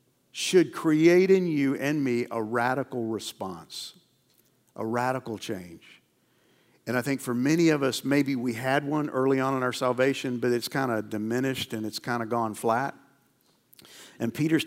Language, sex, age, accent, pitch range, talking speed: English, male, 50-69, American, 120-155 Hz, 170 wpm